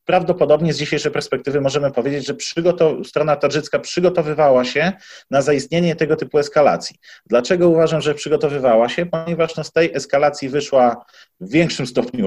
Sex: male